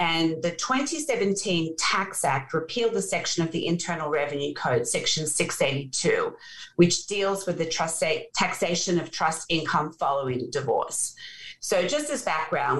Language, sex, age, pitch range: English, female, 40-59, 165-215 Hz